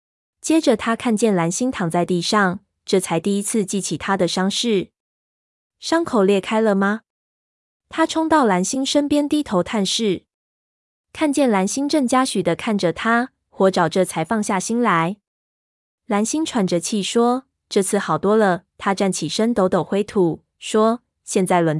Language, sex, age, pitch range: Chinese, female, 20-39, 180-225 Hz